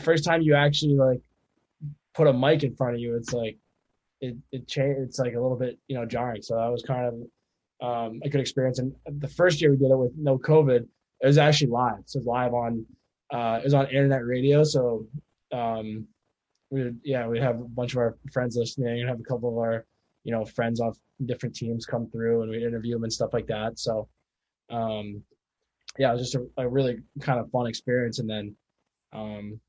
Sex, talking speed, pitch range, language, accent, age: male, 220 wpm, 110-135 Hz, English, American, 20-39